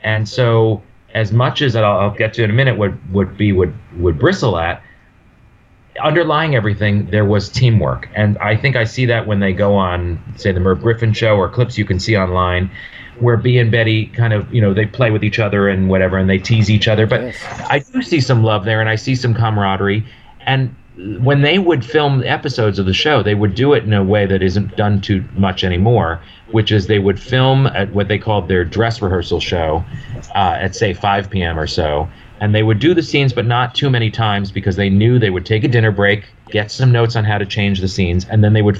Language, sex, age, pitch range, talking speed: English, male, 40-59, 100-120 Hz, 240 wpm